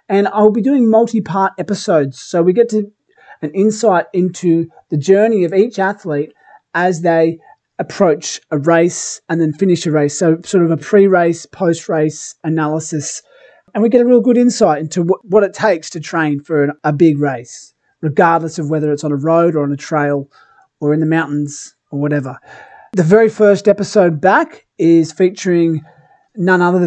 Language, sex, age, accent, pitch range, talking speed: English, male, 30-49, Australian, 155-195 Hz, 170 wpm